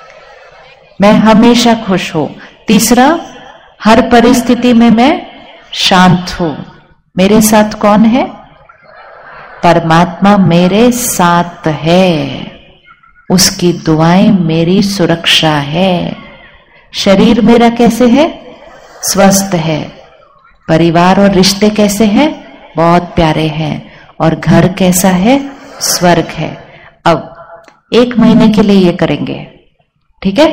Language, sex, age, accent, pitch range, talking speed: Hindi, female, 50-69, native, 175-230 Hz, 100 wpm